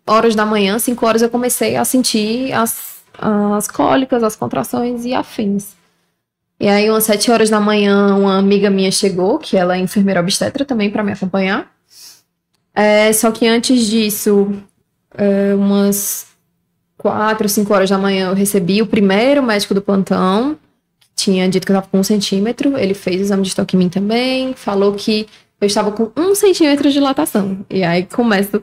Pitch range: 200-250 Hz